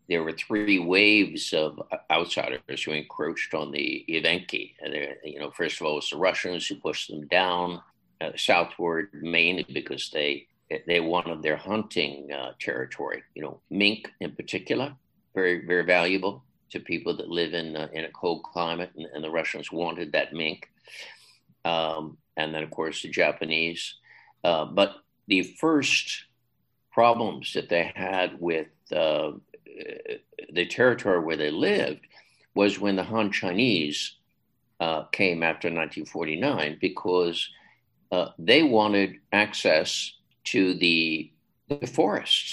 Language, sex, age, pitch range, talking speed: English, male, 60-79, 80-100 Hz, 140 wpm